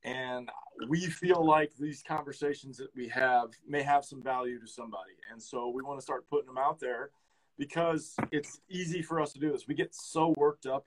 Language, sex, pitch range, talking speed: English, male, 125-150 Hz, 210 wpm